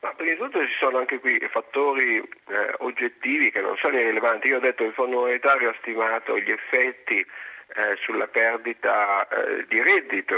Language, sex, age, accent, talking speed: Italian, male, 50-69, native, 185 wpm